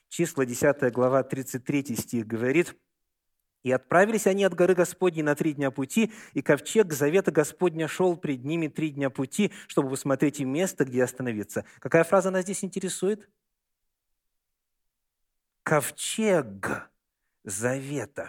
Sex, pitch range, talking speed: male, 125-195 Hz, 130 wpm